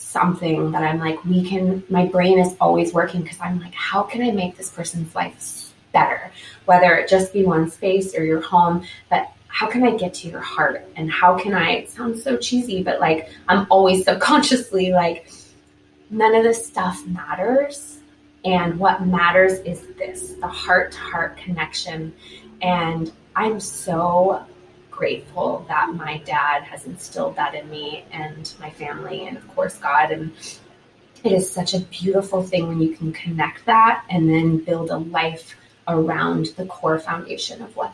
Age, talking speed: 20-39, 175 wpm